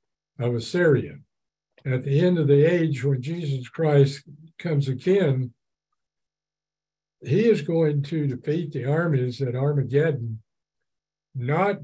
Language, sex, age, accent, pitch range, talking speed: English, male, 60-79, American, 135-155 Hz, 115 wpm